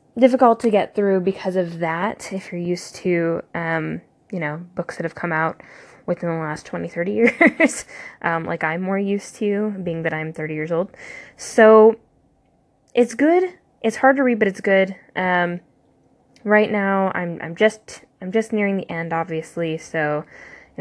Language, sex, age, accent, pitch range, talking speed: English, female, 10-29, American, 170-215 Hz, 175 wpm